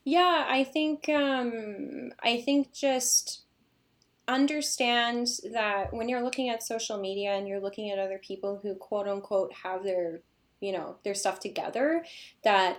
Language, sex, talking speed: English, female, 150 wpm